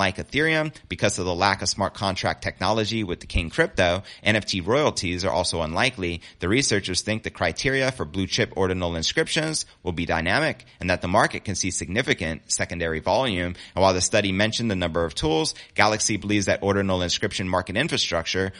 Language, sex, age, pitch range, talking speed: English, male, 30-49, 90-120 Hz, 185 wpm